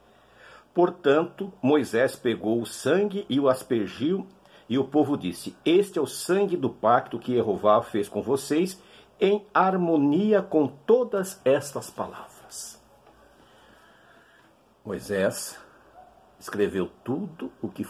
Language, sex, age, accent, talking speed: Portuguese, male, 60-79, Brazilian, 115 wpm